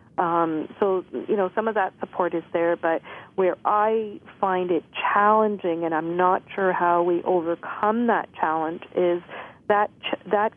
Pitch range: 170-195 Hz